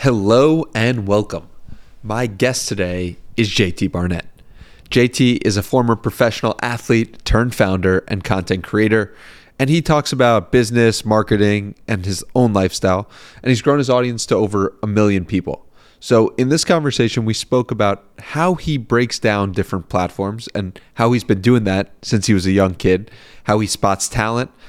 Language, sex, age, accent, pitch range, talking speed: English, male, 30-49, American, 100-120 Hz, 170 wpm